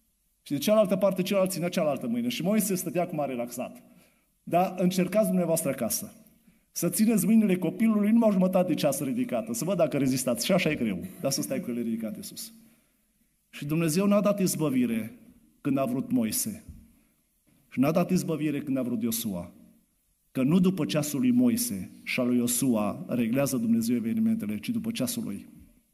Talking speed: 175 wpm